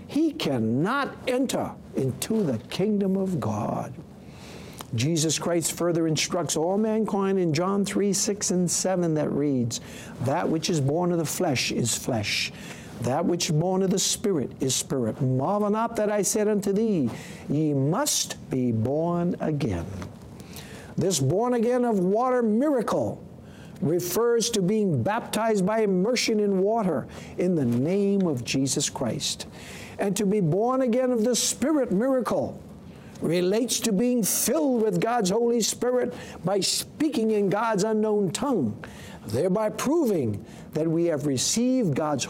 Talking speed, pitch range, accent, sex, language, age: 145 wpm, 155-220 Hz, American, male, English, 60-79